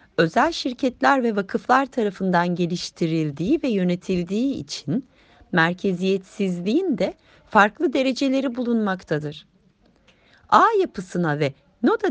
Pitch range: 180-270 Hz